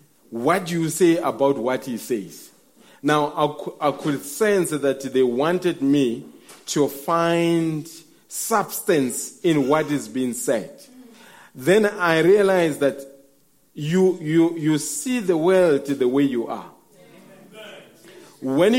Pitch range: 155-210 Hz